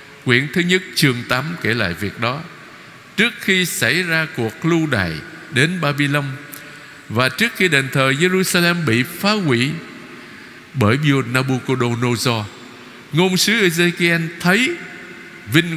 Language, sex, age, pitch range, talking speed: Vietnamese, male, 60-79, 115-170 Hz, 130 wpm